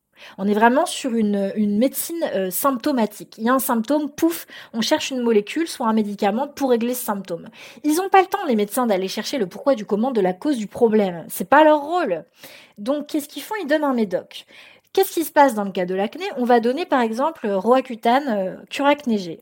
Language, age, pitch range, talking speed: French, 20-39, 205-275 Hz, 230 wpm